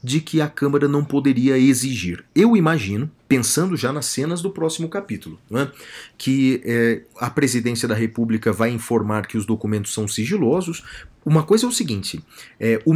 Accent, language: Brazilian, Portuguese